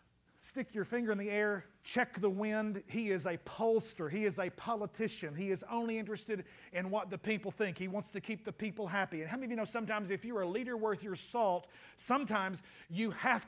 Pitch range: 200-240 Hz